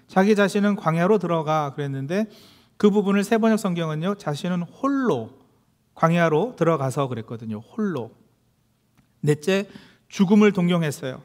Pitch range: 125-195 Hz